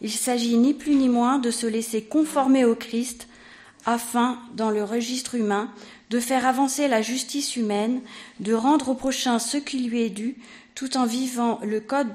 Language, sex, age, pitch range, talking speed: French, female, 40-59, 210-245 Hz, 185 wpm